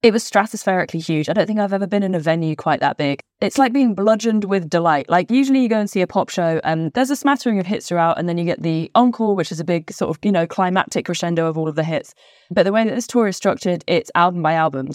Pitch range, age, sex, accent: 155-200 Hz, 20-39, female, British